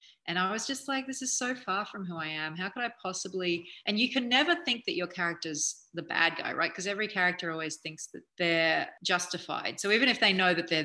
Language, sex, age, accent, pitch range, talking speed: English, female, 30-49, Australian, 165-200 Hz, 245 wpm